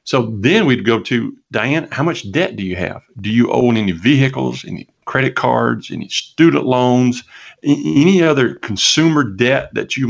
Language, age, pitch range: English, 50-69, 110-140 Hz